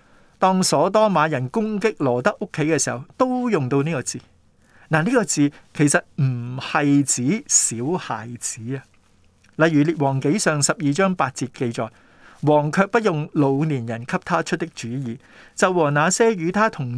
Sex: male